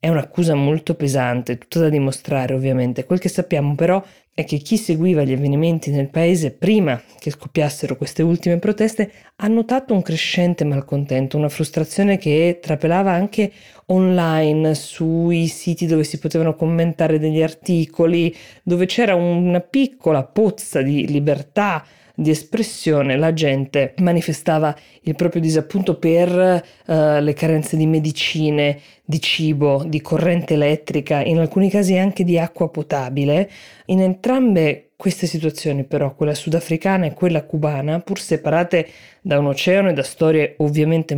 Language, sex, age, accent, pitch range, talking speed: Italian, female, 20-39, native, 150-180 Hz, 140 wpm